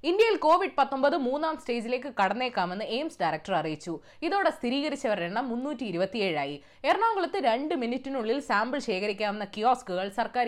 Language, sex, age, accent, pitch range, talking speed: Malayalam, female, 20-39, native, 195-300 Hz, 120 wpm